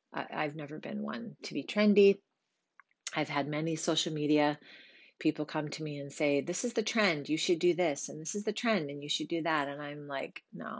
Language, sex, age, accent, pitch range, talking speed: English, female, 30-49, American, 150-190 Hz, 220 wpm